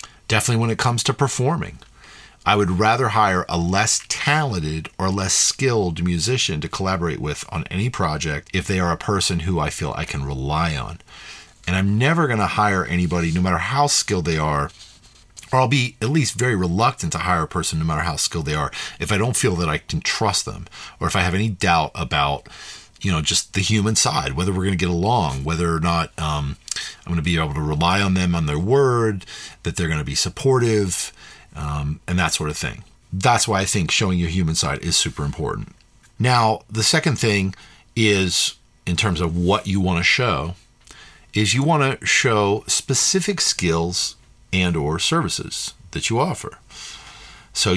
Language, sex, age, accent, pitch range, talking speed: English, male, 40-59, American, 85-110 Hz, 195 wpm